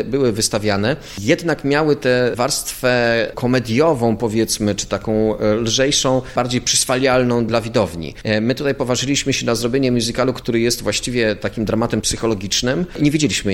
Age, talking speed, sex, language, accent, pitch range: 30-49, 135 wpm, male, Polish, native, 110-130 Hz